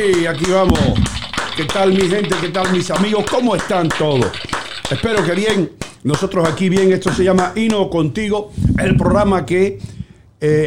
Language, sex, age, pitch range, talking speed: English, male, 60-79, 140-190 Hz, 165 wpm